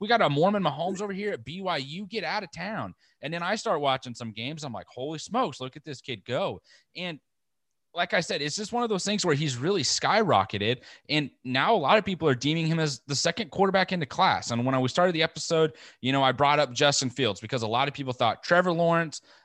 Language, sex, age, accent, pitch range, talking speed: English, male, 30-49, American, 120-160 Hz, 250 wpm